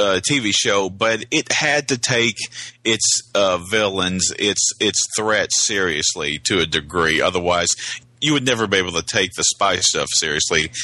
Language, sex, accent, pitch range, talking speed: English, male, American, 95-120 Hz, 165 wpm